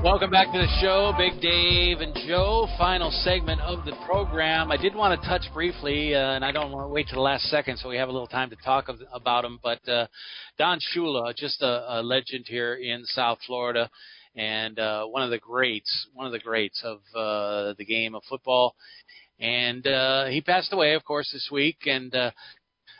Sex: male